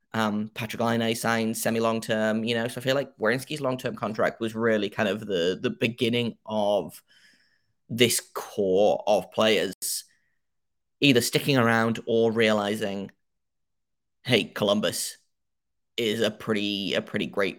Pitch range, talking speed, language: 110-135 Hz, 135 wpm, English